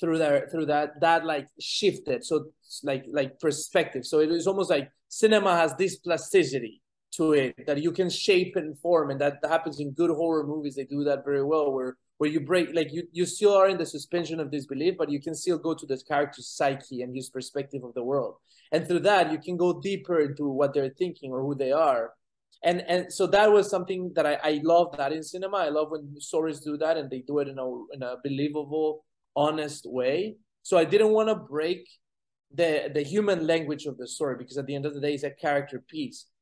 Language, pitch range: English, 140-175 Hz